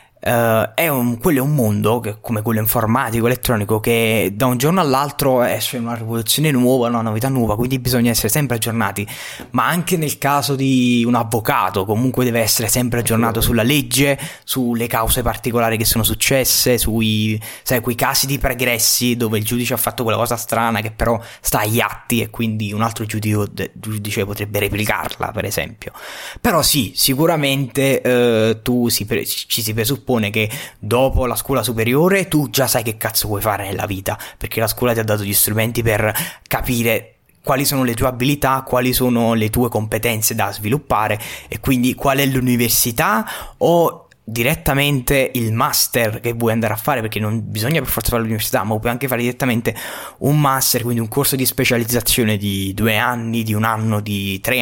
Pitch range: 110-130 Hz